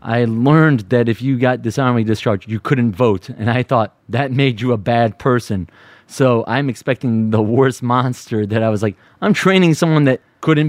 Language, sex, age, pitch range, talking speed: English, male, 30-49, 110-135 Hz, 200 wpm